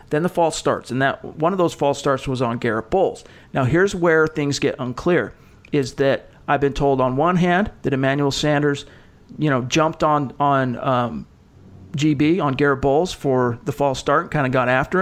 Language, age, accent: English, 40-59, American